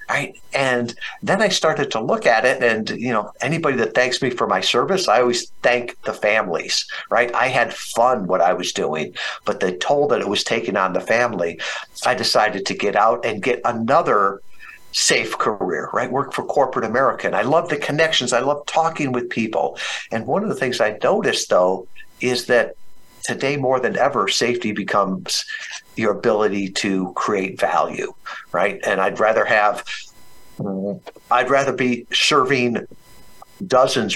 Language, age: English, 50-69